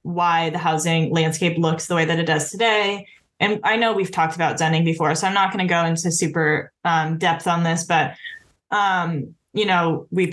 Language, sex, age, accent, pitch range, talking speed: English, female, 10-29, American, 160-180 Hz, 210 wpm